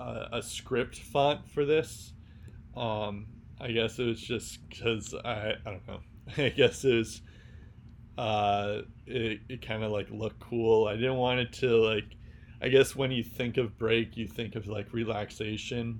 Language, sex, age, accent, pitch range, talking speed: English, male, 20-39, American, 105-115 Hz, 170 wpm